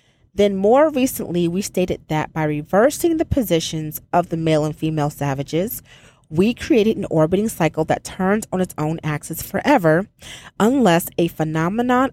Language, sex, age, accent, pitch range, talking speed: English, female, 30-49, American, 160-205 Hz, 155 wpm